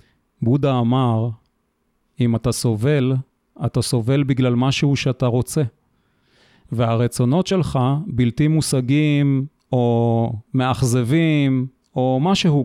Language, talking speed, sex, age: Hebrew, 90 wpm, male, 30-49